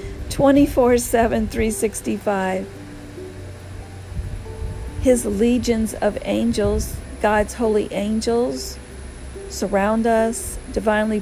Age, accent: 50-69, American